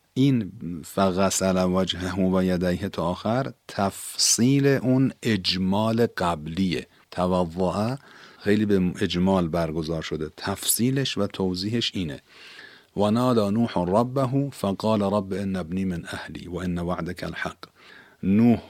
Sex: male